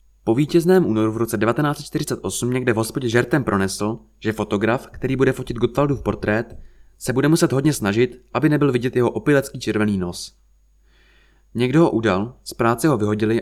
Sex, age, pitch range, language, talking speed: male, 20-39, 100-135 Hz, Czech, 165 wpm